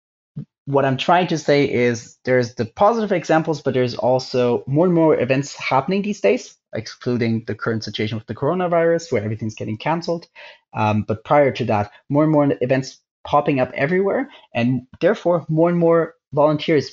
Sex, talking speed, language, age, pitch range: male, 175 wpm, English, 30-49, 115-155 Hz